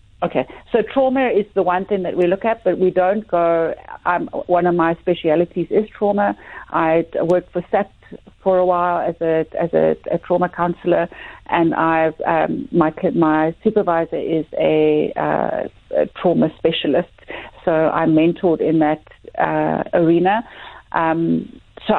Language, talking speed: English, 155 wpm